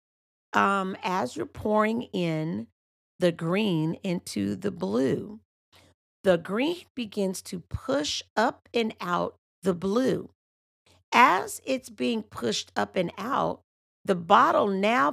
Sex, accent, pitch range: female, American, 170-225 Hz